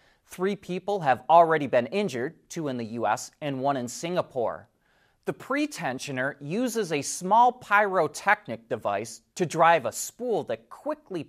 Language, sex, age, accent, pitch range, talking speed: English, male, 30-49, American, 130-180 Hz, 145 wpm